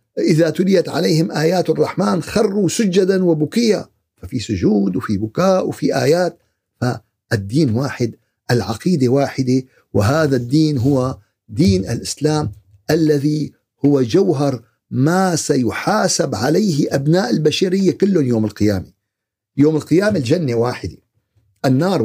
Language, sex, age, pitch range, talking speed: Arabic, male, 50-69, 110-155 Hz, 105 wpm